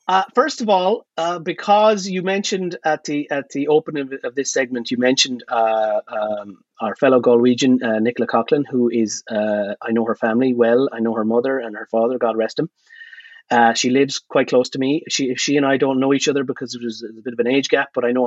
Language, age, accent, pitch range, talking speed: English, 30-49, Irish, 125-160 Hz, 235 wpm